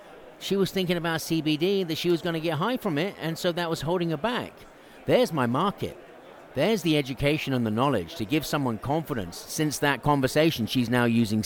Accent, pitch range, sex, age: British, 115-140 Hz, male, 50-69